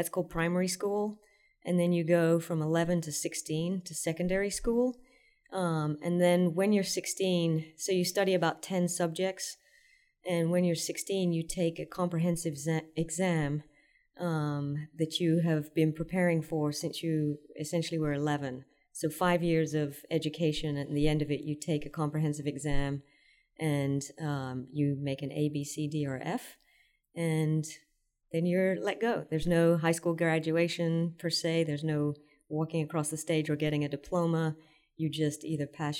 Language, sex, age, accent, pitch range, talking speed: English, female, 30-49, American, 145-170 Hz, 170 wpm